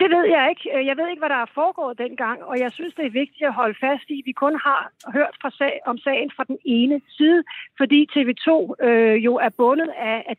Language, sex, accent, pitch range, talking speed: Danish, female, native, 240-290 Hz, 245 wpm